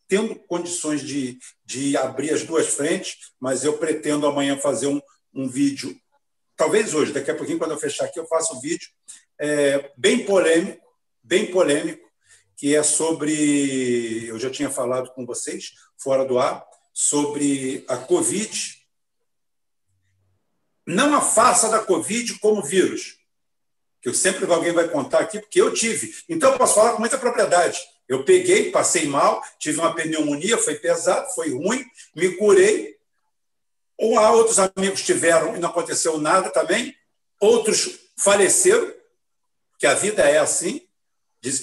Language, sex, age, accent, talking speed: Portuguese, male, 50-69, Brazilian, 150 wpm